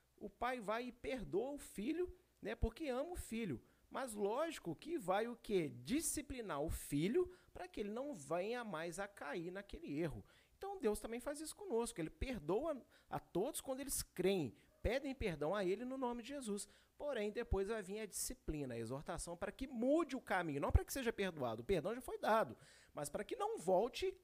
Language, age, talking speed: Portuguese, 40-59, 200 wpm